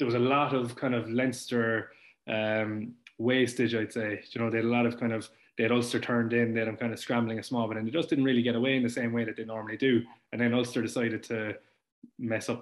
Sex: male